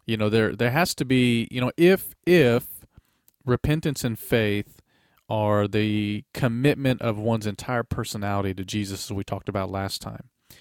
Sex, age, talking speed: male, 40-59, 165 wpm